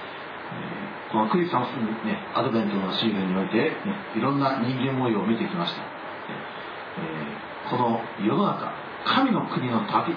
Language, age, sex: Japanese, 50-69, male